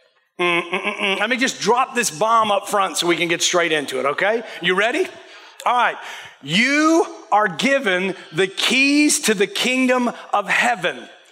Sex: male